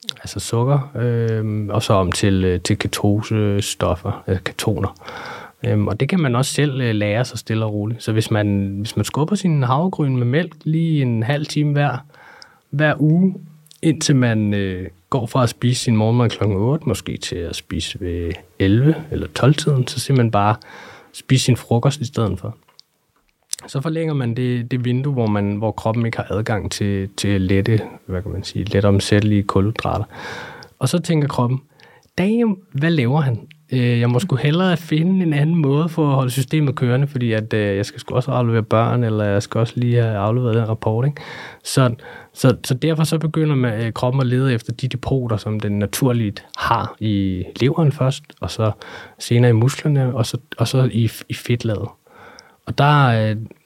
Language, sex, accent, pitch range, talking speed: Danish, male, native, 105-140 Hz, 175 wpm